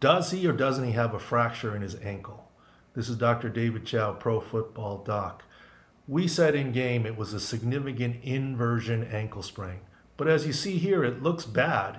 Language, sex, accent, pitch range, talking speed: English, male, American, 110-130 Hz, 190 wpm